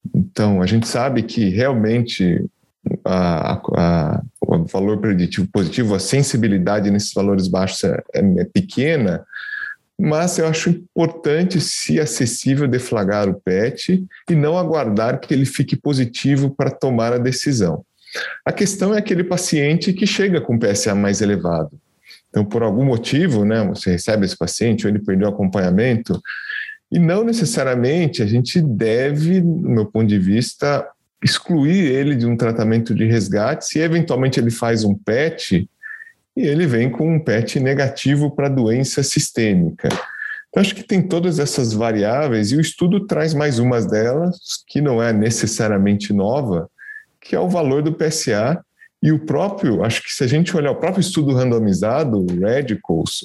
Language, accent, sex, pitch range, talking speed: Portuguese, Brazilian, male, 110-165 Hz, 160 wpm